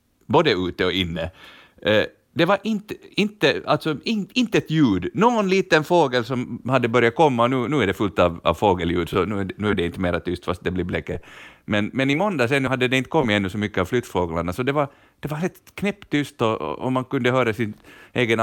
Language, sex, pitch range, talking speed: Swedish, male, 100-140 Hz, 230 wpm